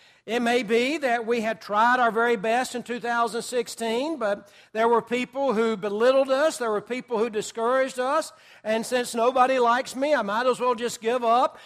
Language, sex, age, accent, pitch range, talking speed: English, male, 60-79, American, 210-255 Hz, 190 wpm